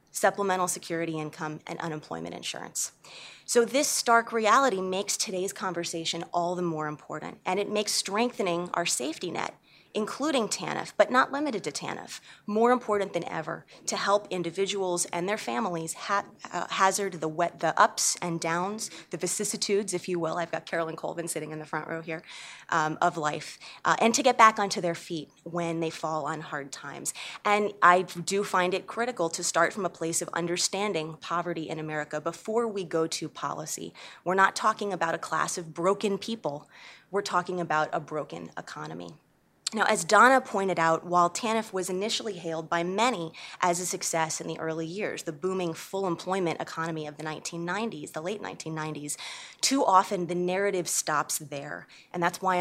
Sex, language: female, English